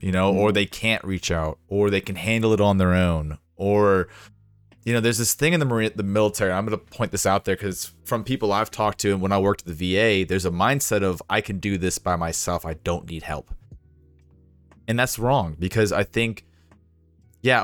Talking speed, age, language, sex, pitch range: 230 wpm, 30-49, English, male, 85-110 Hz